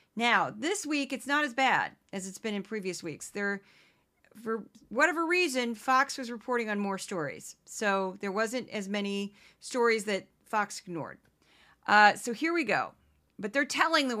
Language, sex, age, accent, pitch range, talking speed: English, female, 40-59, American, 195-245 Hz, 170 wpm